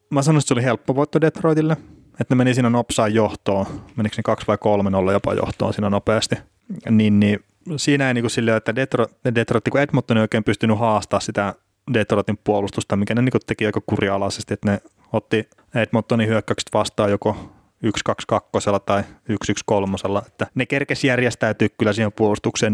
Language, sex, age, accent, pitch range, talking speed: Finnish, male, 20-39, native, 100-125 Hz, 180 wpm